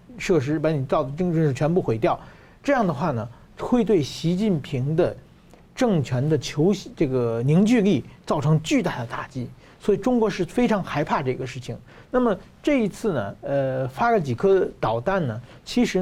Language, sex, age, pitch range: Chinese, male, 50-69, 140-205 Hz